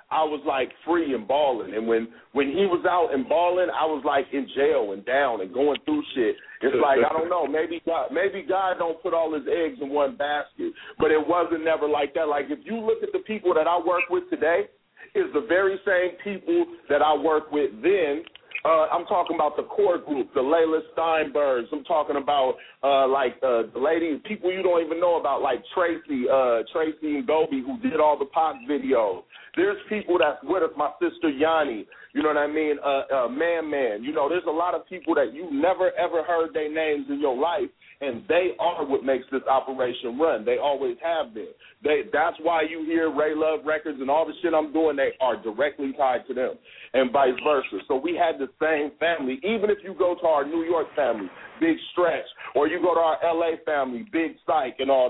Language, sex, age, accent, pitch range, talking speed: English, male, 40-59, American, 150-205 Hz, 220 wpm